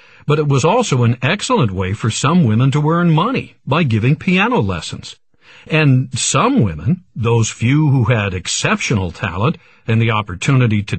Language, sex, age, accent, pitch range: Chinese, male, 60-79, American, 115-155 Hz